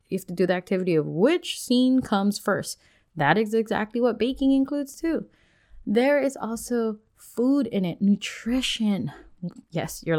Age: 20-39